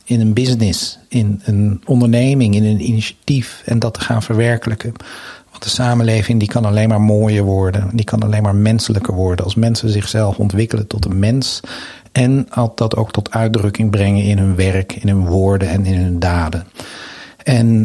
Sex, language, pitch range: male, Dutch, 105-120 Hz